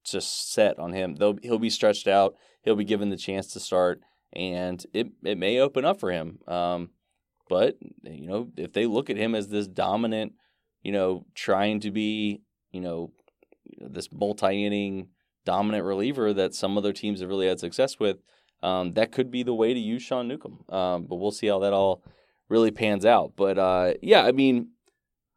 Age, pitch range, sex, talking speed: 20-39, 95-115 Hz, male, 190 wpm